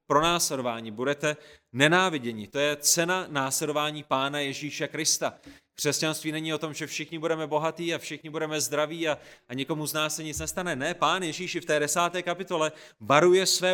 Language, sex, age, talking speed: Czech, male, 30-49, 175 wpm